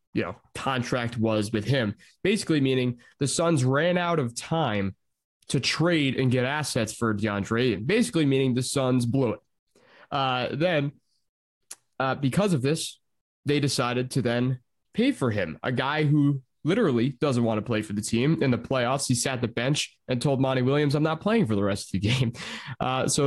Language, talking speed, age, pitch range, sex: English, 190 wpm, 20-39, 115-145 Hz, male